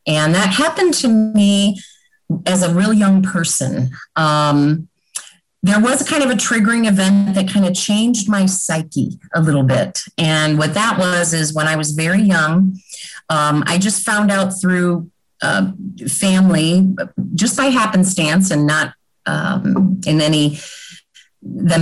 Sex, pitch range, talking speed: female, 155-200 Hz, 150 wpm